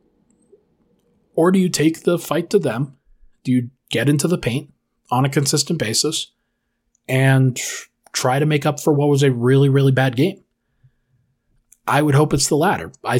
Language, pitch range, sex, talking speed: English, 120-140 Hz, male, 175 wpm